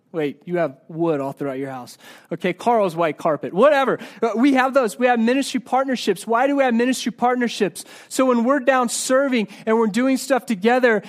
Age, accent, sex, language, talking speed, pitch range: 30-49, American, male, English, 195 wpm, 170-230 Hz